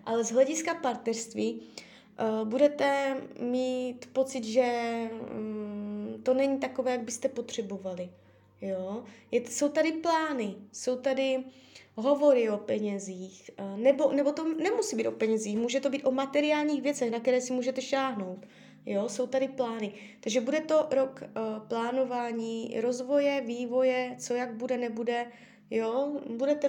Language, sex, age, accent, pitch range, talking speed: Czech, female, 20-39, native, 210-270 Hz, 125 wpm